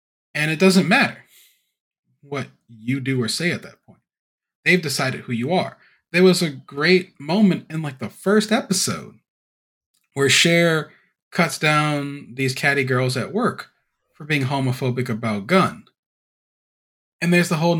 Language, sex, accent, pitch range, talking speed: English, male, American, 125-170 Hz, 150 wpm